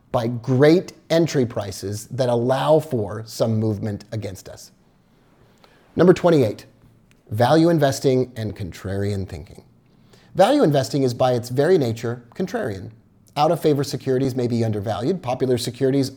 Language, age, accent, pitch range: English, 30-49, American, 115-160 Hz